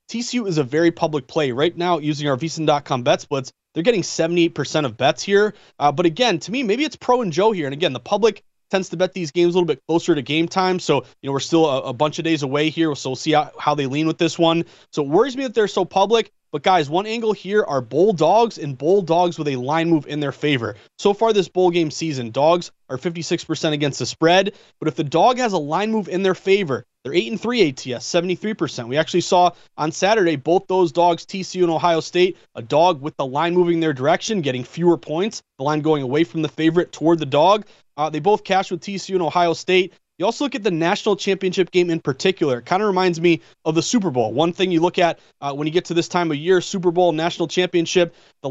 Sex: male